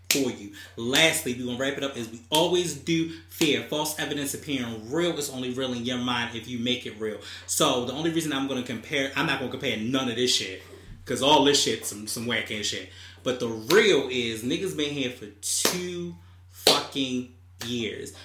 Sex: male